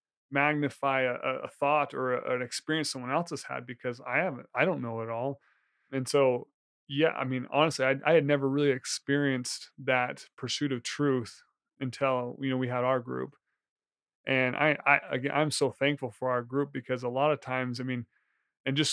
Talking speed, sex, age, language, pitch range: 195 wpm, male, 30-49, English, 125-145 Hz